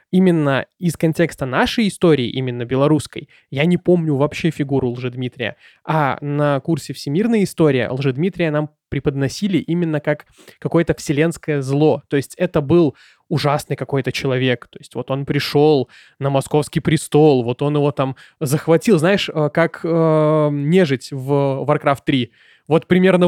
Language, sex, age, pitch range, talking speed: Russian, male, 20-39, 145-175 Hz, 145 wpm